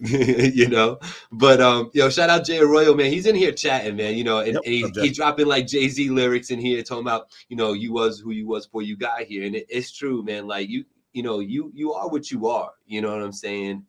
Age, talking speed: 30-49, 260 wpm